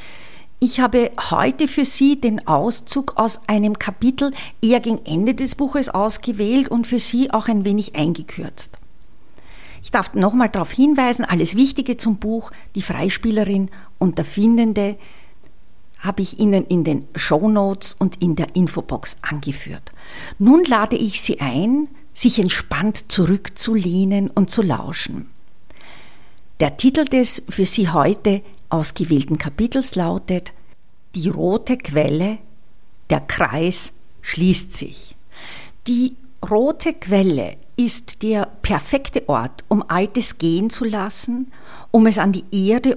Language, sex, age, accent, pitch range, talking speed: German, female, 50-69, Austrian, 180-235 Hz, 130 wpm